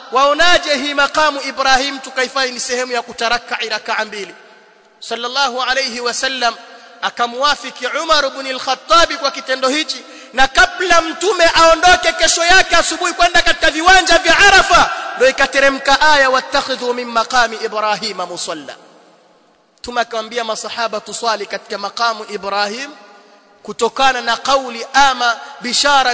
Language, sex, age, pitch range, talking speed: Swahili, male, 30-49, 235-280 Hz, 120 wpm